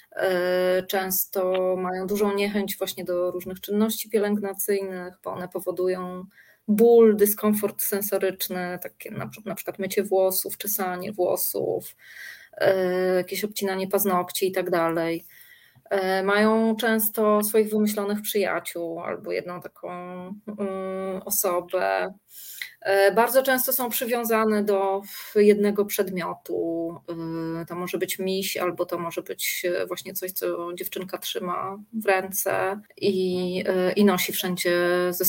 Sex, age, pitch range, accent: female, 20-39, 180-210 Hz, native